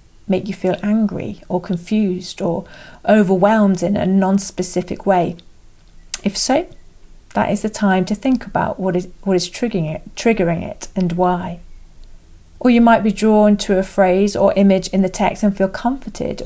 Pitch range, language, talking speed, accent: 180-210 Hz, English, 170 wpm, British